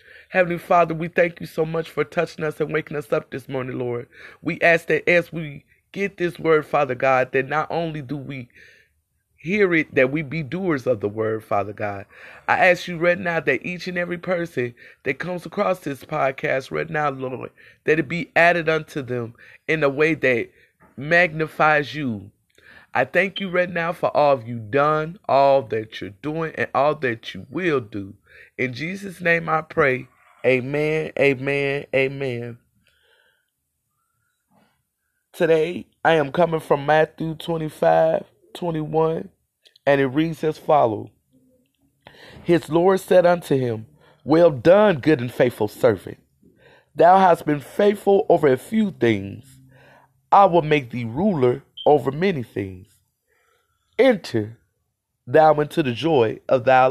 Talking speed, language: 155 wpm, English